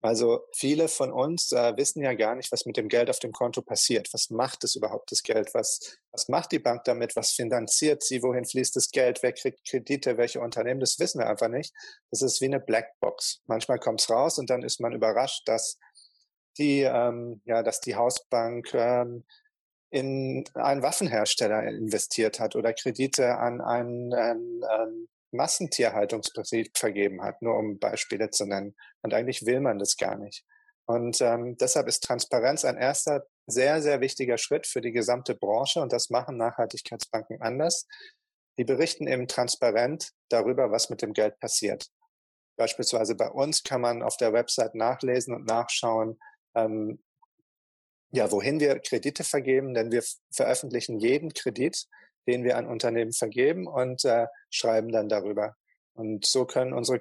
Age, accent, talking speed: 30-49, German, 170 wpm